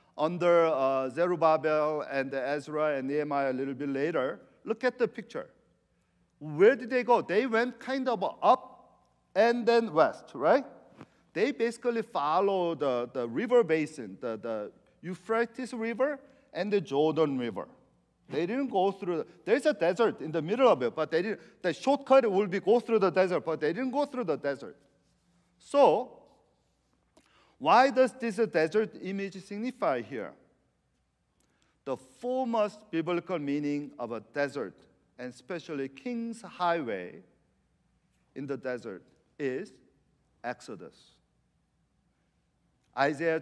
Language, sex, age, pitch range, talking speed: English, male, 50-69, 150-225 Hz, 140 wpm